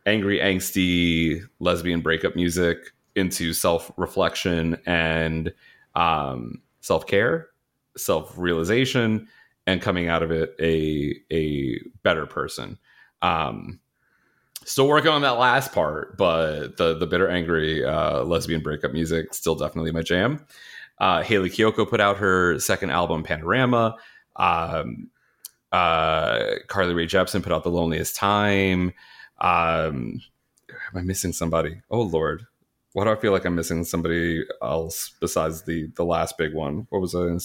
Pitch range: 80-105 Hz